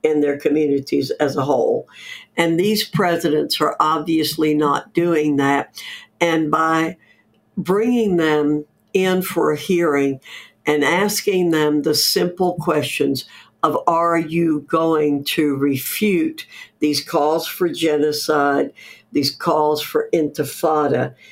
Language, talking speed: English, 120 wpm